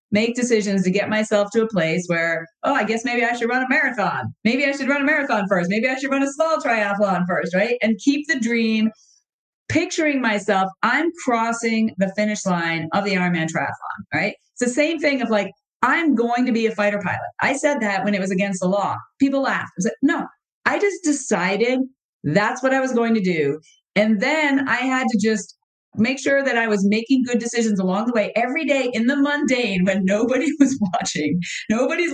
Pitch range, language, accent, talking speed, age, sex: 190-250 Hz, English, American, 215 wpm, 40-59, female